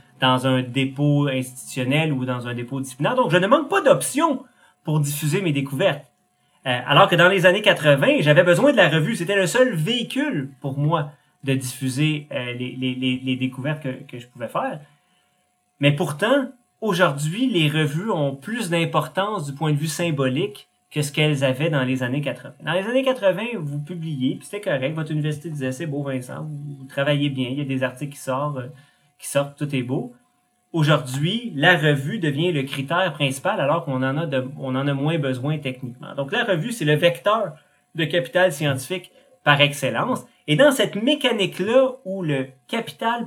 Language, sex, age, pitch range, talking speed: French, male, 30-49, 135-180 Hz, 190 wpm